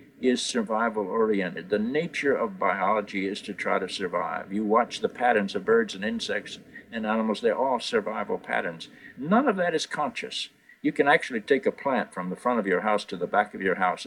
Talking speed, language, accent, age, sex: 205 wpm, English, American, 60-79, male